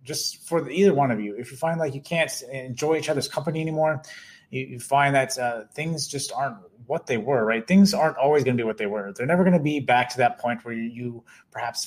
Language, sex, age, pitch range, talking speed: English, male, 30-49, 125-165 Hz, 265 wpm